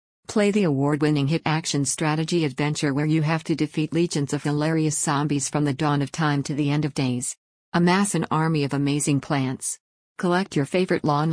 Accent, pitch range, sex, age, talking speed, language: American, 140-165 Hz, female, 50-69, 190 wpm, English